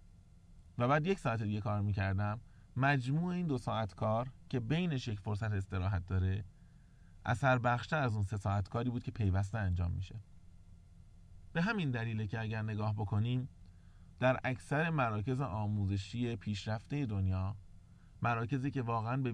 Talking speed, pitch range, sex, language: 145 wpm, 95-120 Hz, male, Persian